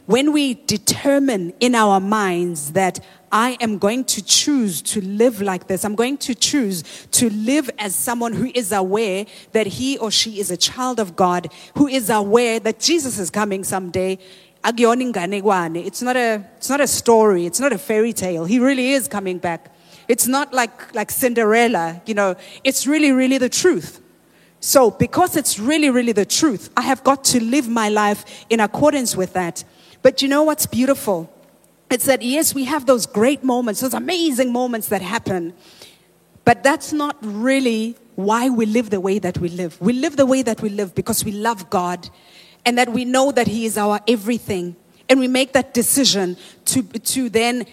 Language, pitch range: English, 200-260 Hz